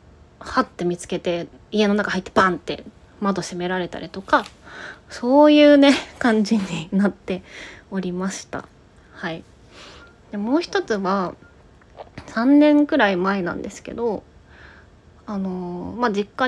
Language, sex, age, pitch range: Japanese, female, 20-39, 185-270 Hz